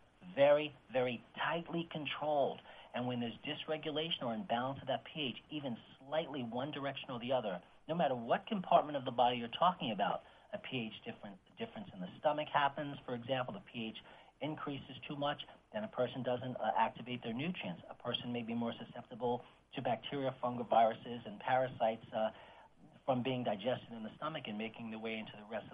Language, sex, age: English, male, 40-59